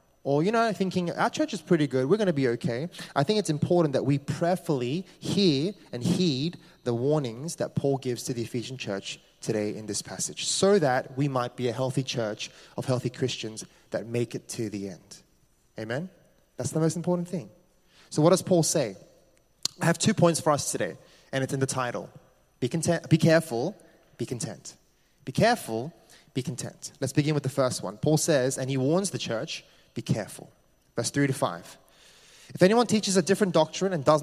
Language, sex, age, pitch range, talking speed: English, male, 20-39, 130-175 Hz, 200 wpm